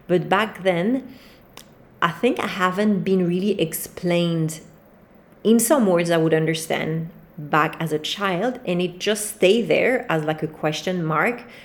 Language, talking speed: English, 155 wpm